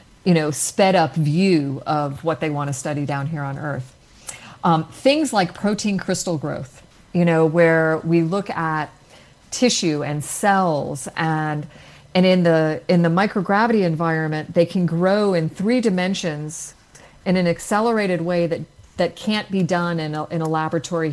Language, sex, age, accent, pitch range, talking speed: Hebrew, female, 40-59, American, 155-185 Hz, 165 wpm